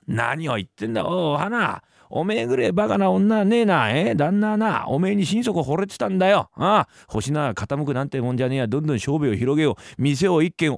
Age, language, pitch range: 40-59, Japanese, 135-190 Hz